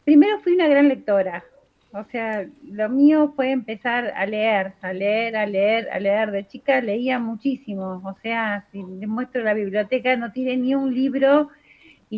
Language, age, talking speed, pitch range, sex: Spanish, 30-49, 175 wpm, 220-290 Hz, female